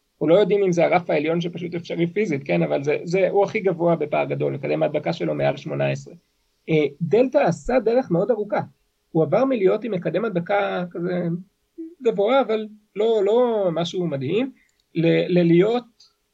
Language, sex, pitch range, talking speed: Hebrew, male, 160-200 Hz, 160 wpm